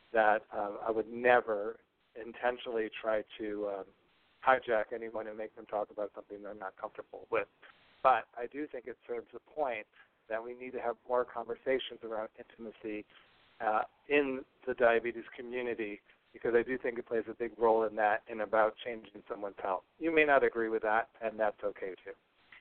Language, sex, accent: English, male, American